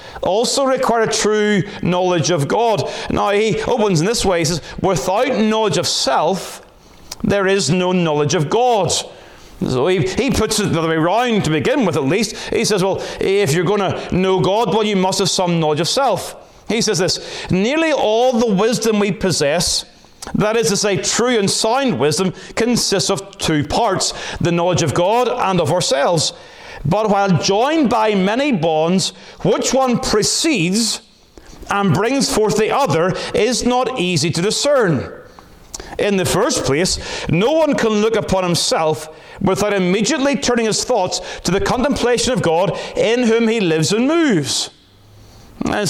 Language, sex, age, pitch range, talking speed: English, male, 30-49, 180-235 Hz, 170 wpm